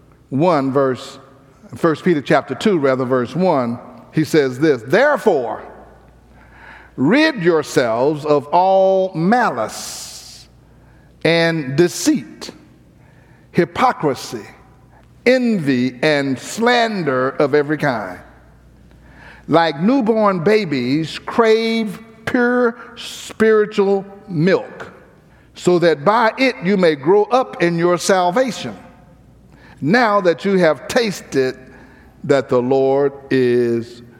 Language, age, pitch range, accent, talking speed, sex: English, 60-79, 135-190 Hz, American, 95 wpm, male